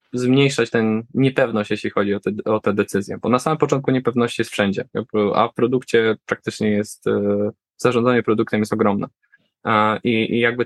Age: 20-39